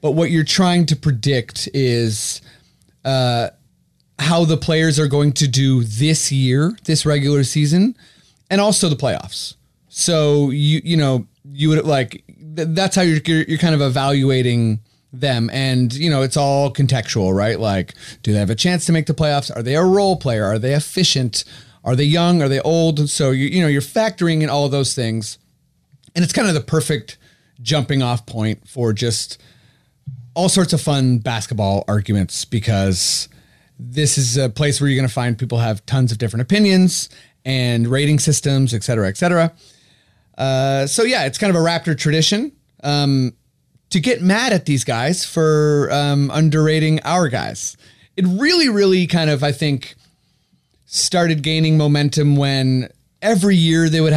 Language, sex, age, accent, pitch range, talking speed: English, male, 30-49, American, 125-160 Hz, 175 wpm